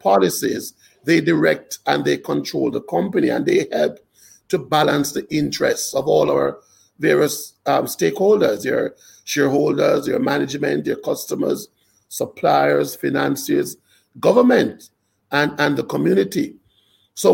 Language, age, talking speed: English, 50-69, 120 wpm